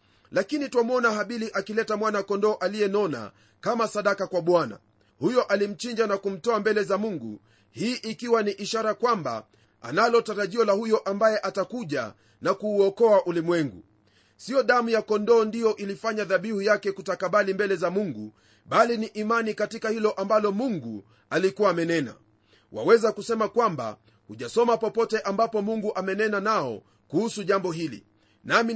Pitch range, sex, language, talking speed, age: 160-225 Hz, male, Swahili, 140 wpm, 30-49